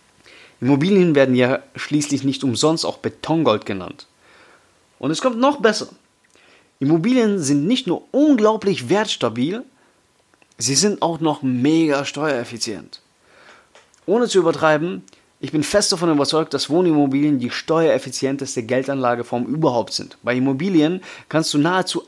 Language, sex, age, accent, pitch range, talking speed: German, male, 30-49, German, 125-170 Hz, 125 wpm